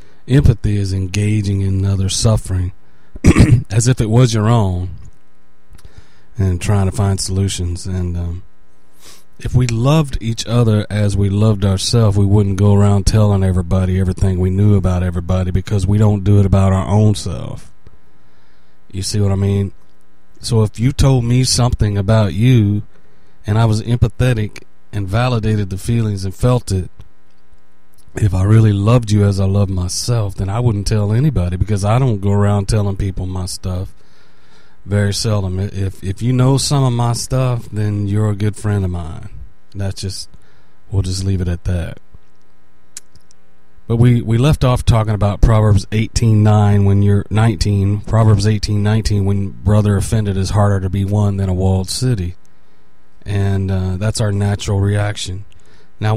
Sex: male